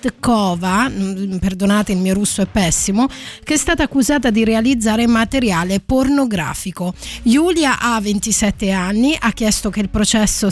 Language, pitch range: Italian, 205-260 Hz